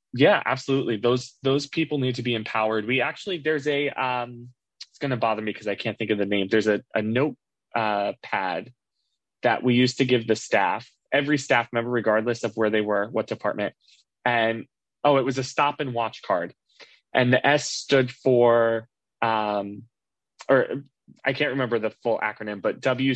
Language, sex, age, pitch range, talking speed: English, male, 20-39, 110-135 Hz, 190 wpm